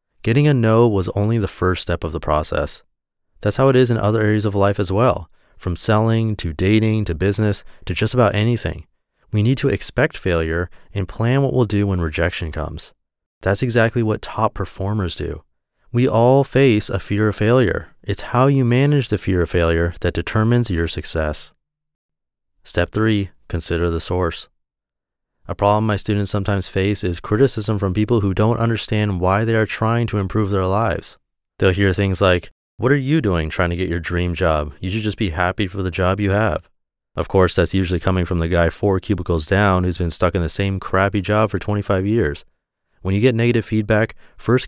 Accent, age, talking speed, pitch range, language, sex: American, 30-49, 200 wpm, 90-110 Hz, English, male